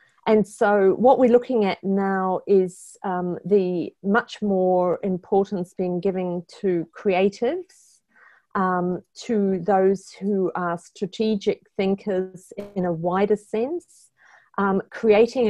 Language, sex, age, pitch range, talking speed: English, female, 50-69, 180-210 Hz, 115 wpm